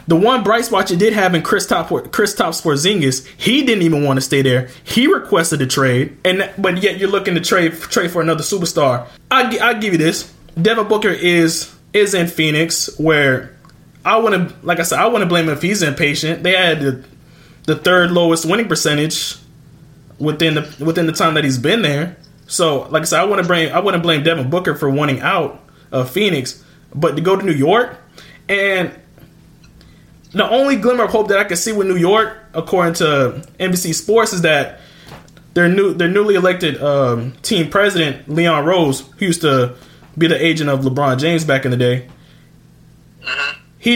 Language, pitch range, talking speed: English, 155-200 Hz, 200 wpm